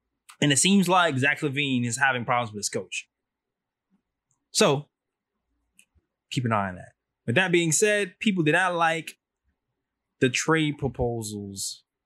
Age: 20-39